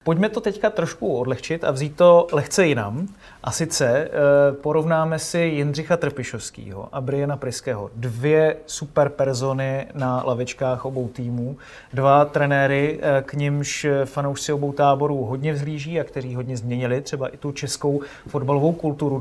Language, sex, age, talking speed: Czech, male, 30-49, 145 wpm